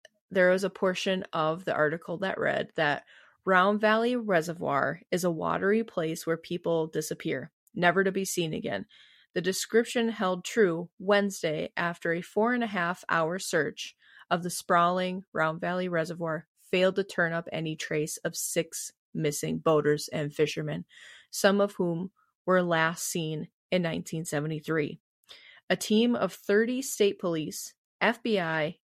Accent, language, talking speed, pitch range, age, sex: American, English, 140 wpm, 160-195 Hz, 30-49, female